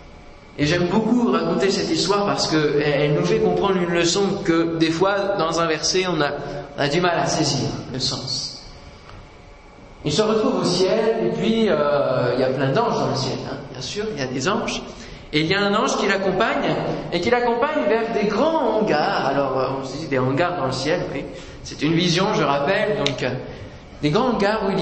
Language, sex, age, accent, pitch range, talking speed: French, male, 20-39, French, 145-200 Hz, 220 wpm